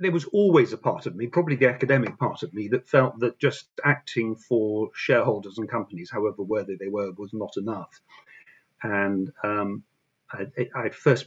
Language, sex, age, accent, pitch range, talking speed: English, male, 50-69, British, 105-130 Hz, 180 wpm